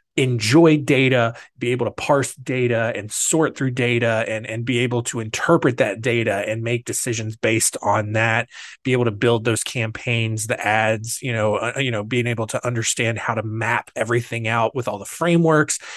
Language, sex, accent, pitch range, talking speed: English, male, American, 115-150 Hz, 190 wpm